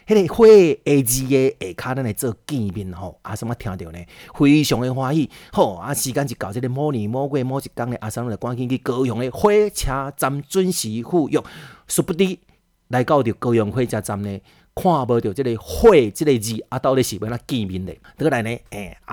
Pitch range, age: 105-140 Hz, 30-49